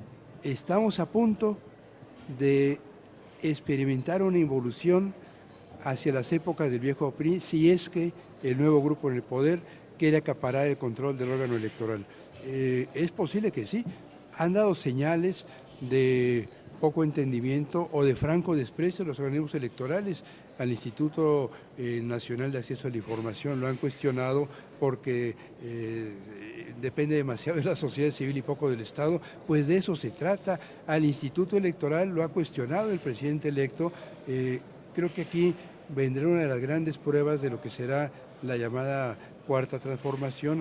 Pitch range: 125-160 Hz